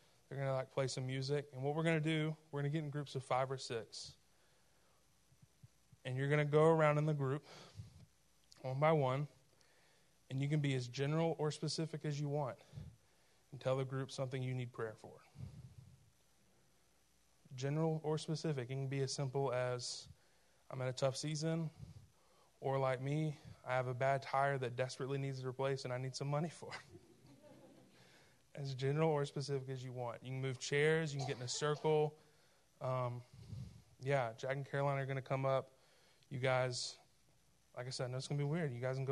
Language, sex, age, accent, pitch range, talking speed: English, male, 20-39, American, 130-155 Hz, 200 wpm